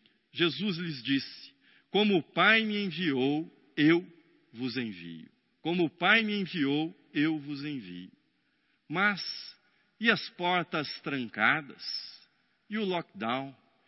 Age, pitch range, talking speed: 50-69, 135-195 Hz, 115 wpm